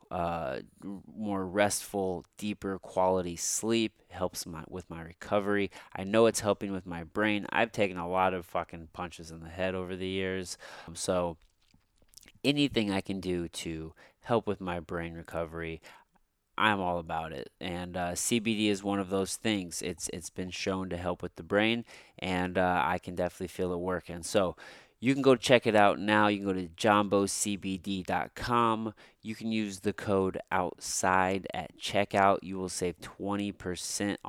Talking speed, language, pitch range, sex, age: 170 wpm, English, 90-105 Hz, male, 30-49